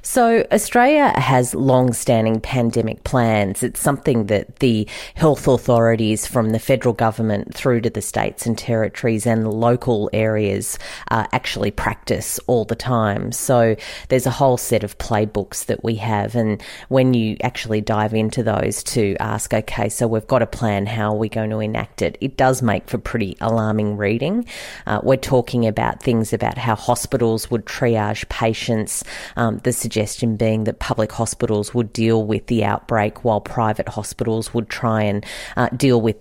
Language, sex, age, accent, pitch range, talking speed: English, female, 30-49, Australian, 110-120 Hz, 170 wpm